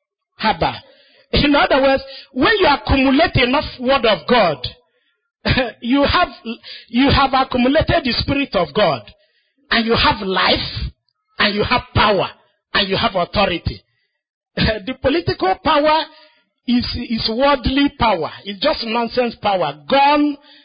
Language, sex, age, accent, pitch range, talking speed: English, male, 50-69, Nigerian, 240-360 Hz, 125 wpm